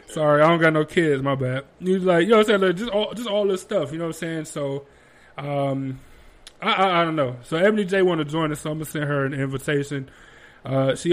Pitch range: 135-170 Hz